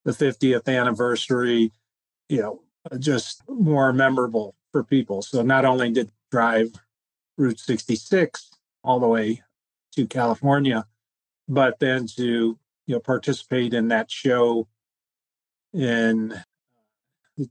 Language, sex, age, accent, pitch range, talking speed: English, male, 40-59, American, 110-135 Hz, 115 wpm